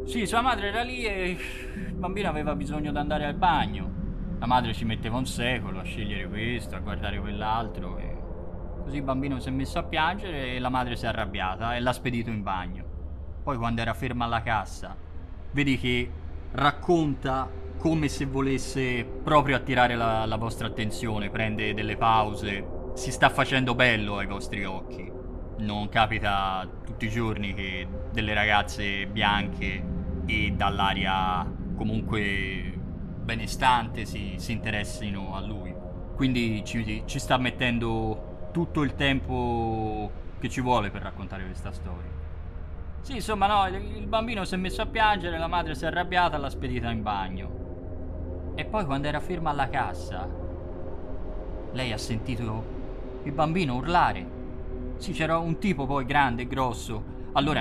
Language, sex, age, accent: Italian, male, 20-39, native